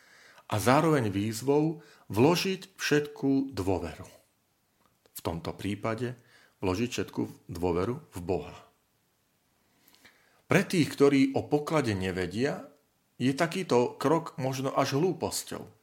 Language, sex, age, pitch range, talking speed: Slovak, male, 40-59, 90-130 Hz, 100 wpm